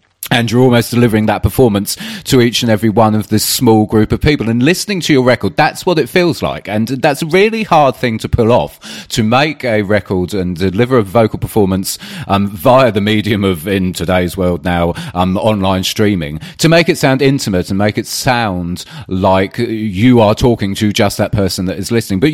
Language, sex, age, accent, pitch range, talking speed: English, male, 30-49, British, 95-120 Hz, 210 wpm